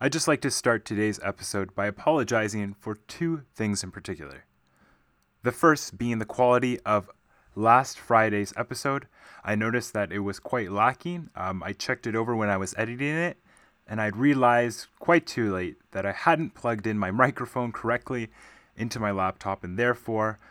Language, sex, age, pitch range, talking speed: English, male, 20-39, 100-130 Hz, 175 wpm